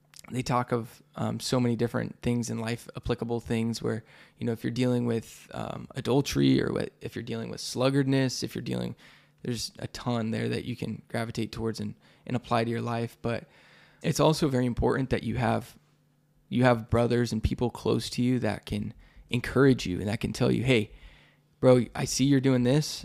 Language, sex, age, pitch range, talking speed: English, male, 20-39, 115-130 Hz, 200 wpm